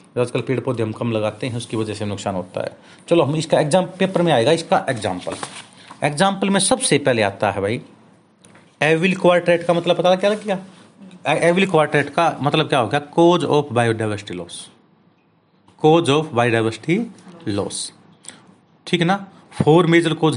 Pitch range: 120-180 Hz